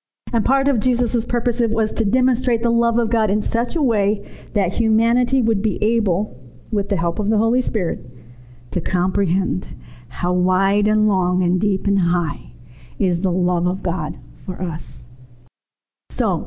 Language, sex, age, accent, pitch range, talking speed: English, female, 50-69, American, 185-235 Hz, 170 wpm